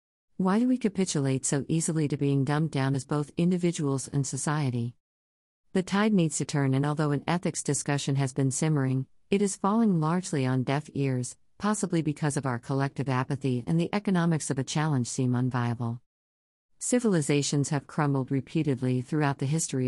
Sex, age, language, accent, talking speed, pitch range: female, 50-69, English, American, 170 wpm, 130-155 Hz